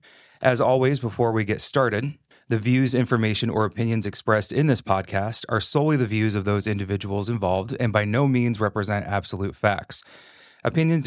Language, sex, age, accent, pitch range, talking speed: English, male, 30-49, American, 105-130 Hz, 170 wpm